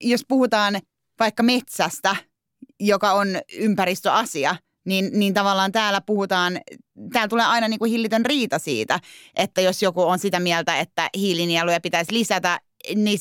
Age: 30-49